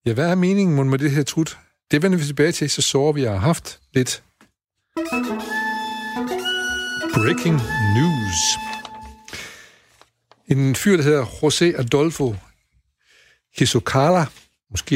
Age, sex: 60-79, male